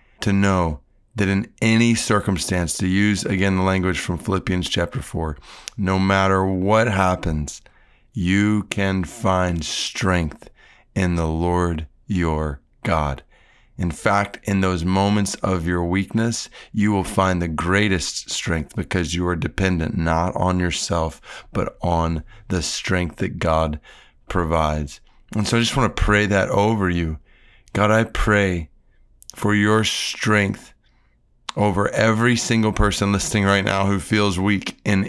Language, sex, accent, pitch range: English, male, American, 90-110 Hz